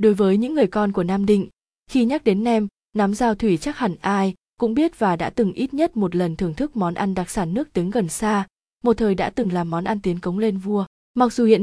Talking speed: 265 wpm